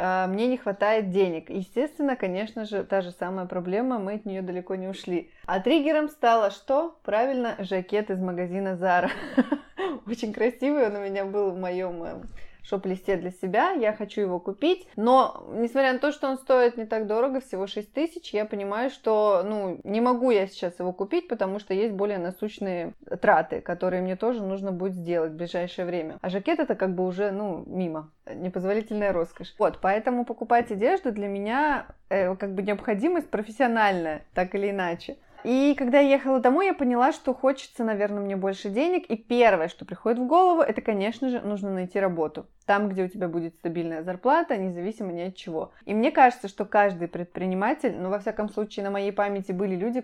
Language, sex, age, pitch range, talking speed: Russian, female, 20-39, 185-245 Hz, 185 wpm